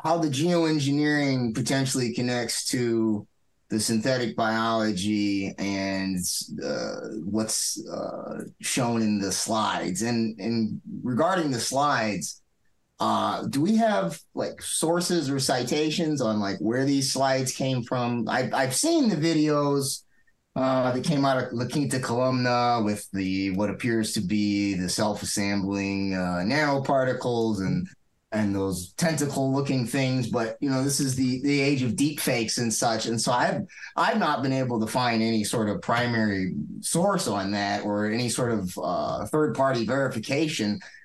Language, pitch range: English, 110-140 Hz